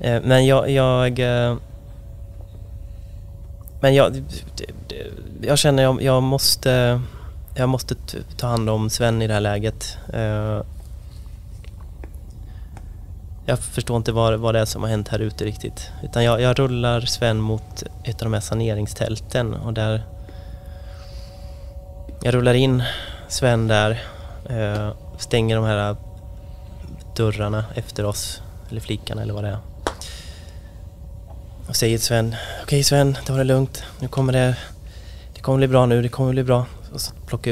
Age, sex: 20-39, male